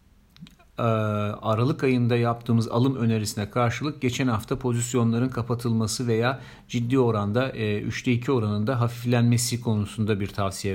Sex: male